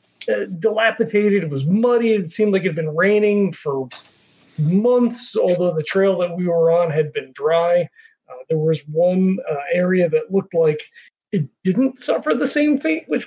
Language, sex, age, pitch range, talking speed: English, male, 40-59, 165-210 Hz, 180 wpm